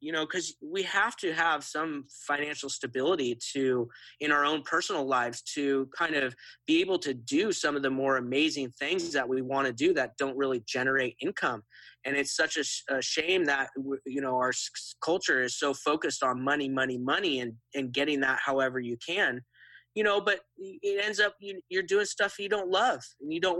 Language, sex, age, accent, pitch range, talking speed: English, male, 30-49, American, 130-170 Hz, 205 wpm